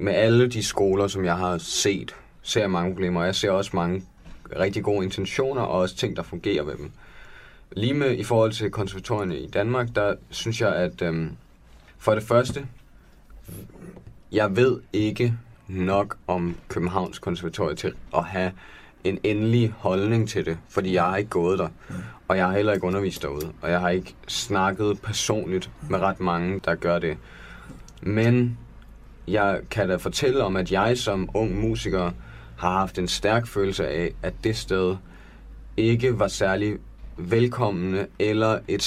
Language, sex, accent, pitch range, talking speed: Danish, male, native, 90-110 Hz, 170 wpm